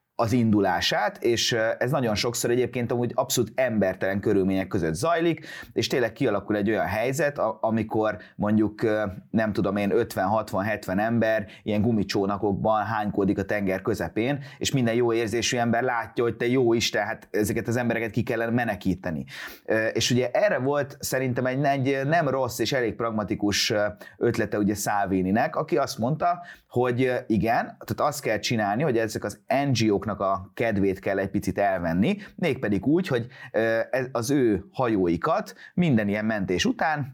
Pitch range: 110-135 Hz